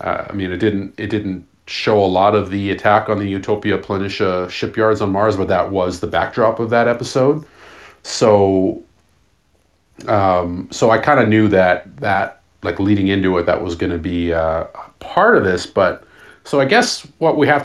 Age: 40-59